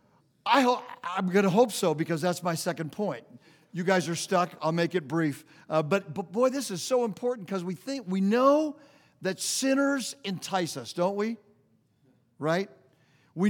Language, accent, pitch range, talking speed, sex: English, American, 155-205 Hz, 180 wpm, male